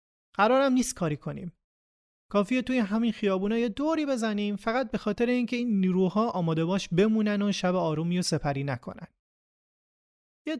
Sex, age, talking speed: male, 30-49, 165 wpm